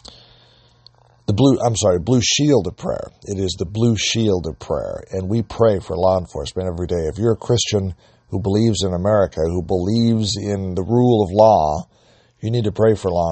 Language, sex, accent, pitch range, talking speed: English, male, American, 95-120 Hz, 190 wpm